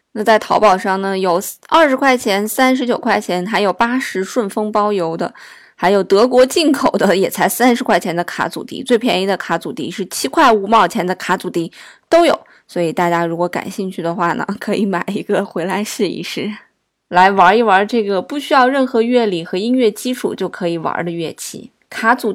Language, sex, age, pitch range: Chinese, female, 20-39, 185-240 Hz